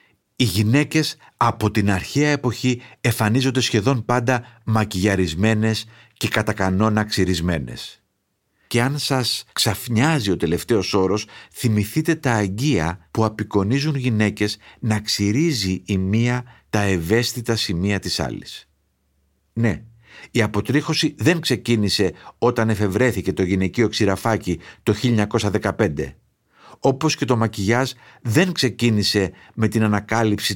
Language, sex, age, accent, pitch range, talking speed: Greek, male, 50-69, native, 100-125 Hz, 110 wpm